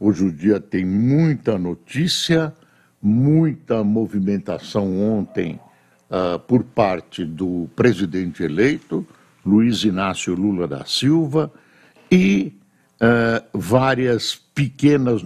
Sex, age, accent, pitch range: male, 60-79, Brazilian, 105-155 Hz